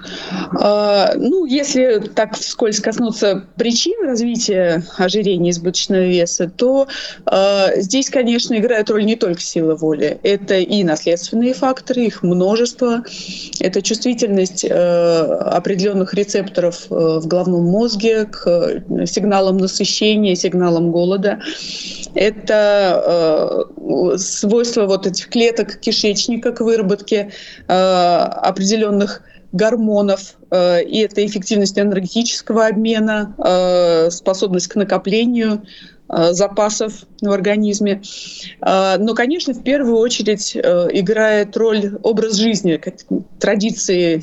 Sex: female